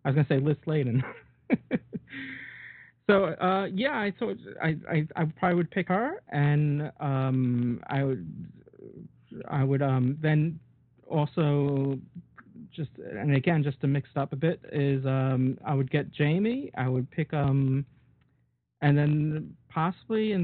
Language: English